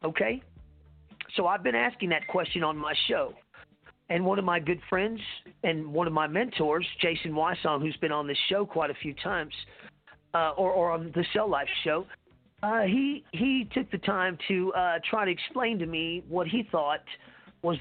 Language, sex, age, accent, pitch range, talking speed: English, male, 40-59, American, 160-200 Hz, 190 wpm